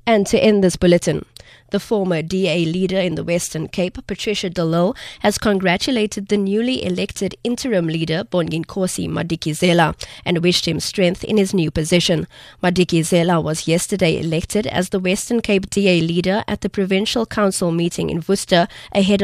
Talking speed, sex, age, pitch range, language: 155 wpm, female, 20-39, 165-200 Hz, English